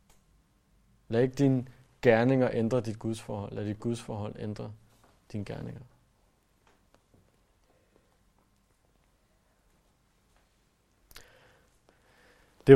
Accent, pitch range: native, 110-130 Hz